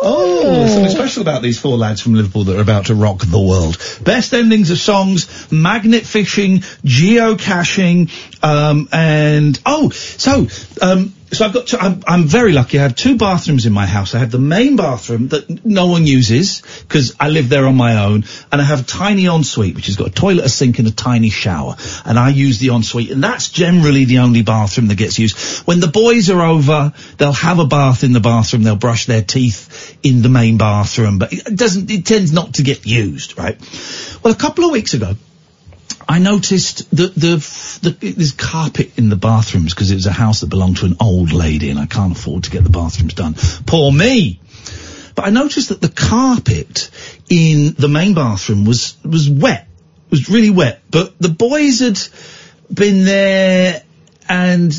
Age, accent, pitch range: 50-69, British, 115-185 Hz